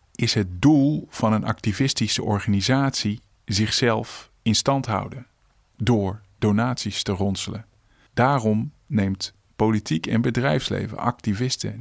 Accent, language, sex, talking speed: Dutch, Dutch, male, 105 wpm